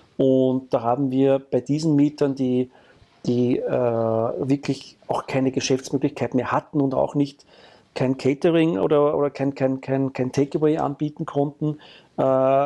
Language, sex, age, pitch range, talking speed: German, male, 40-59, 135-150 Hz, 145 wpm